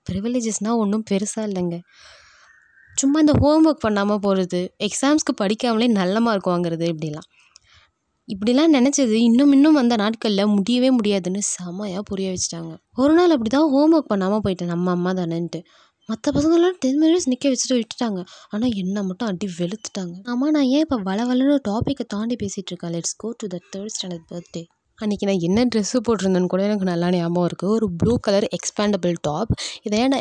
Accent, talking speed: native, 165 wpm